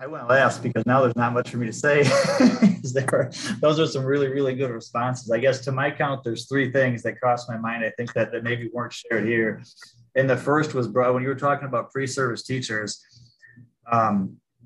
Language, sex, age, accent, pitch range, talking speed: English, male, 30-49, American, 115-130 Hz, 220 wpm